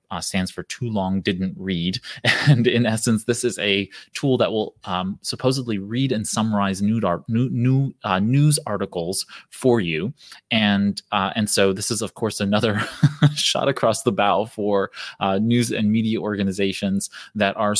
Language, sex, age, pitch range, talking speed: English, male, 20-39, 95-115 Hz, 170 wpm